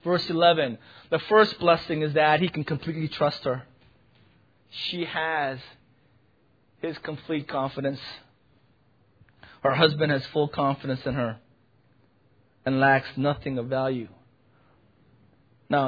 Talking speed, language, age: 115 wpm, English, 20-39